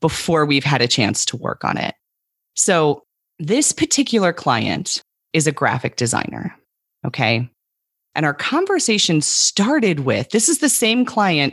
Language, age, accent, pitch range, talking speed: English, 30-49, American, 130-190 Hz, 145 wpm